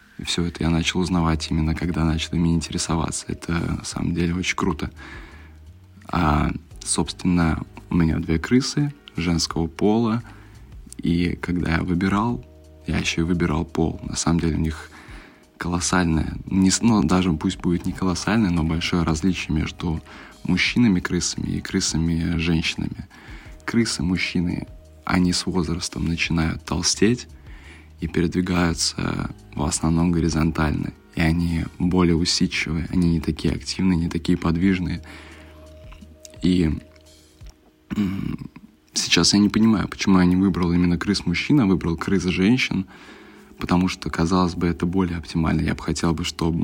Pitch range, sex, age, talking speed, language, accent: 80-90 Hz, male, 20-39, 135 wpm, Russian, native